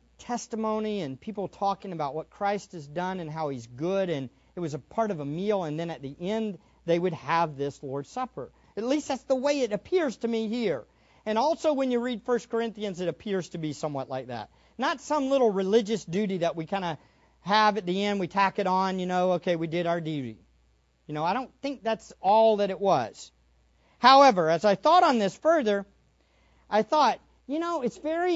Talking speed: 220 wpm